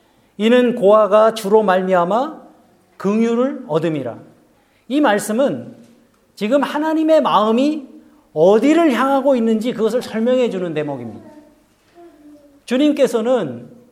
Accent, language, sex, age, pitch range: native, Korean, male, 40-59, 210-275 Hz